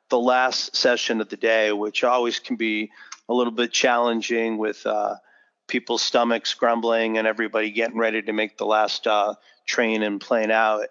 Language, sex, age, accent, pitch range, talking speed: English, male, 40-59, American, 110-125 Hz, 175 wpm